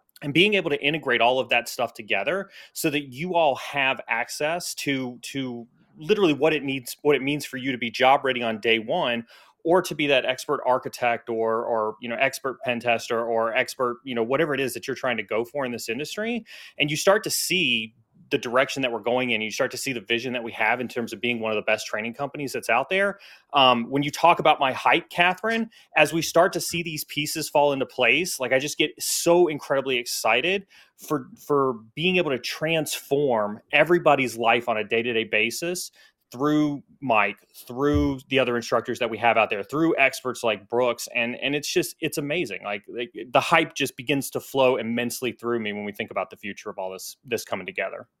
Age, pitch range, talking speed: 30-49, 120-150 Hz, 220 wpm